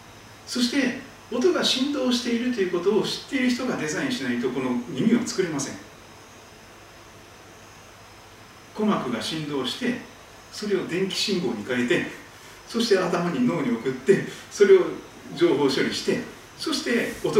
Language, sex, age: Japanese, male, 40-59